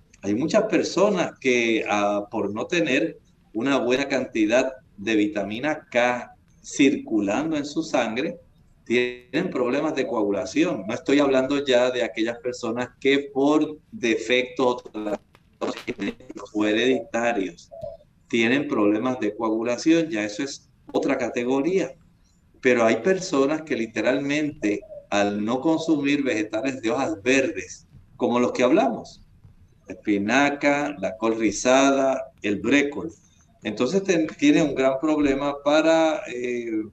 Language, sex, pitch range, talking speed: Spanish, male, 120-155 Hz, 120 wpm